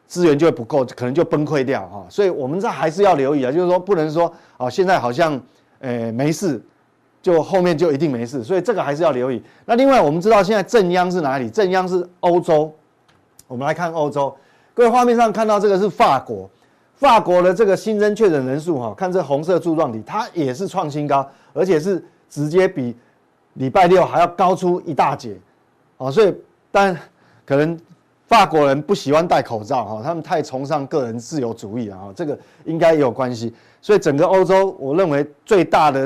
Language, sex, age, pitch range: Chinese, male, 30-49, 135-190 Hz